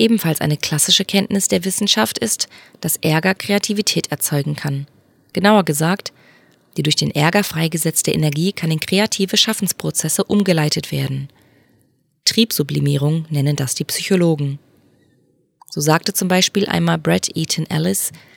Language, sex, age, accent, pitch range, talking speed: German, female, 20-39, German, 150-190 Hz, 125 wpm